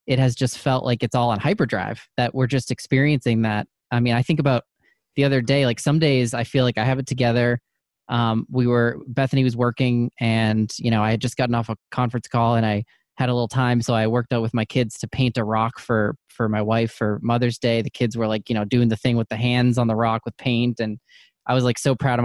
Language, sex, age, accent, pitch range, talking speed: English, male, 20-39, American, 115-130 Hz, 260 wpm